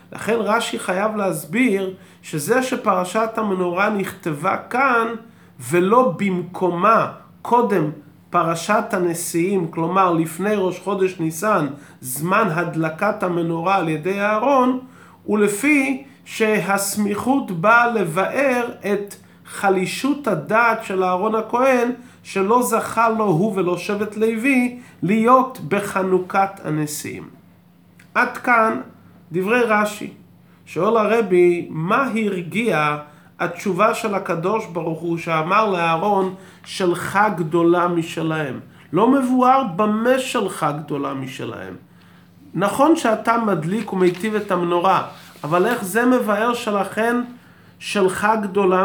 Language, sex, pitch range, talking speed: Hebrew, male, 175-225 Hz, 100 wpm